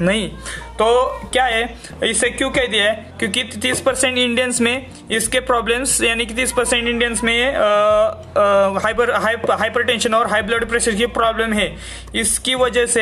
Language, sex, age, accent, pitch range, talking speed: Hindi, male, 20-39, native, 210-245 Hz, 160 wpm